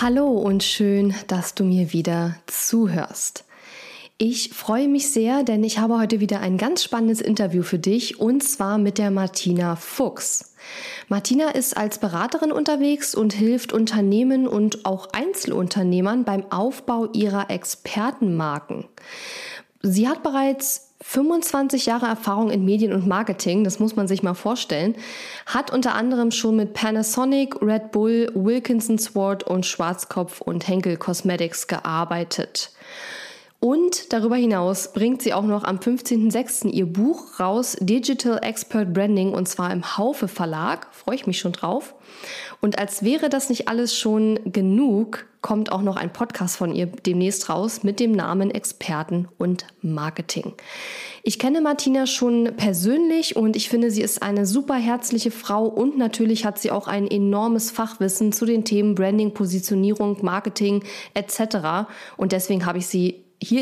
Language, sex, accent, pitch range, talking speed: German, female, German, 190-240 Hz, 150 wpm